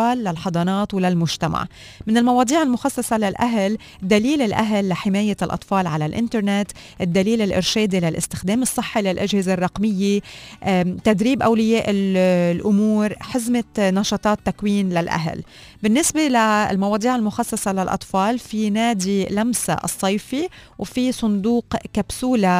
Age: 30-49